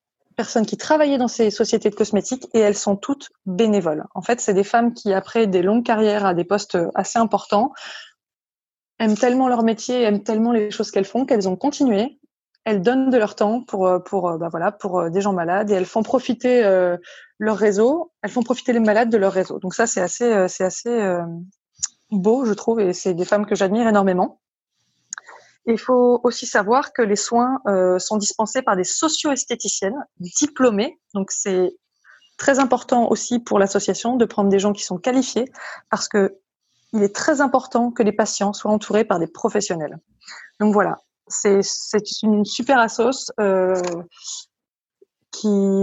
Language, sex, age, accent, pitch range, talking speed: French, female, 20-39, French, 195-240 Hz, 175 wpm